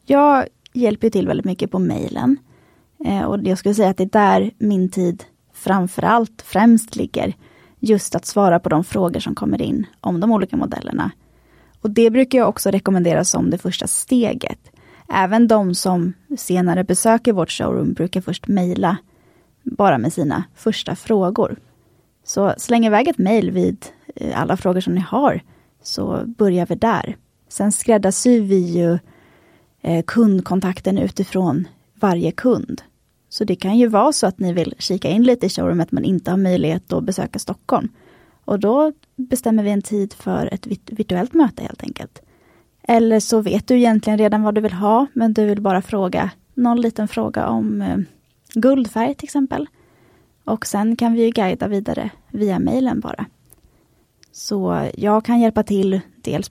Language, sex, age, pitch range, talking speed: Swedish, female, 20-39, 185-230 Hz, 165 wpm